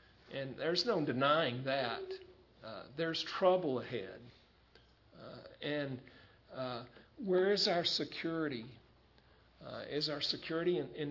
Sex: male